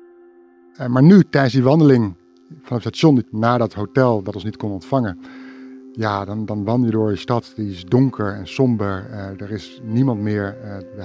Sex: male